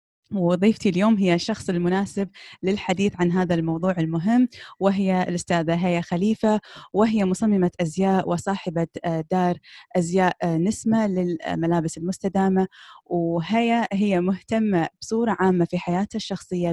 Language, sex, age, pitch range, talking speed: Arabic, female, 20-39, 175-200 Hz, 110 wpm